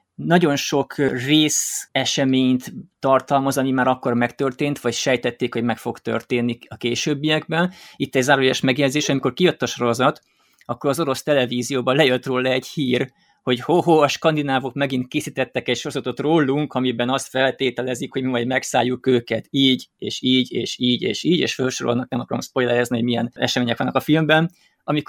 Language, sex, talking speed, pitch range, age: Hungarian, male, 165 wpm, 120-145 Hz, 20-39